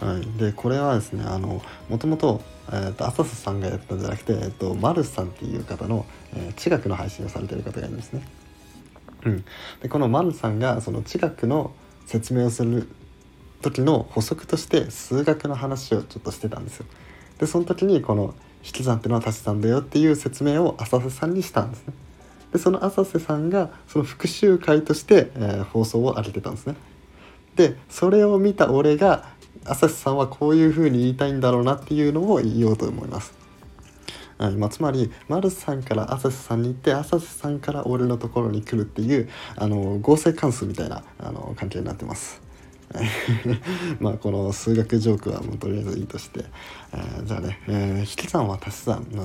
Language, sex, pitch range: Japanese, male, 105-145 Hz